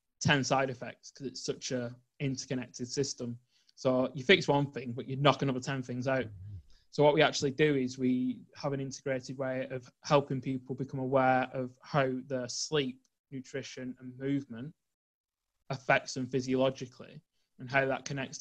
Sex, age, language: male, 20-39, English